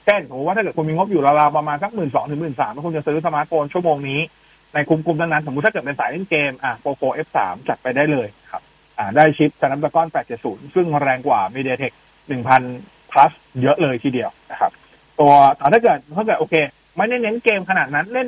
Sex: male